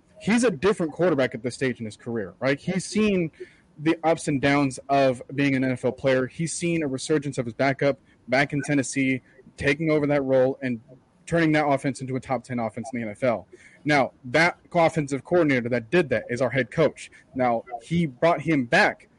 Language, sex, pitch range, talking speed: English, male, 130-165 Hz, 200 wpm